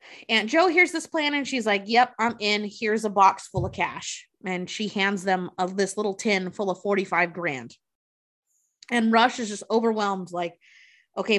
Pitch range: 195-255 Hz